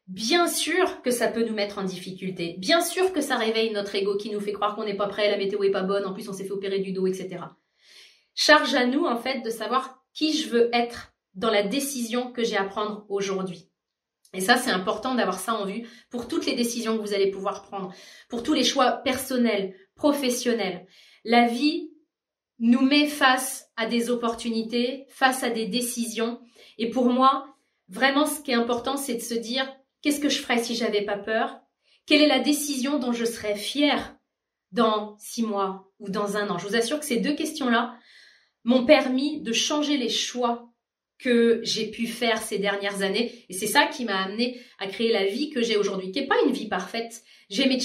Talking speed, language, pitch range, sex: 210 wpm, French, 205-265 Hz, female